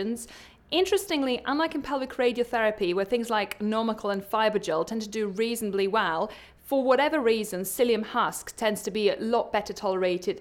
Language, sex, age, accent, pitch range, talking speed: English, female, 30-49, British, 200-250 Hz, 160 wpm